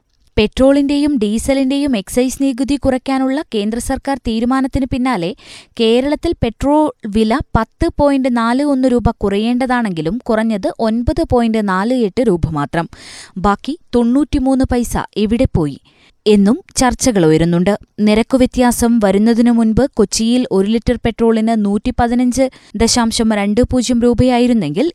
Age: 20-39